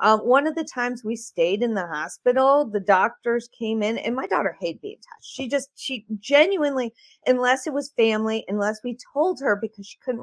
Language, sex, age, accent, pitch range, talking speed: English, female, 40-59, American, 210-280 Hz, 205 wpm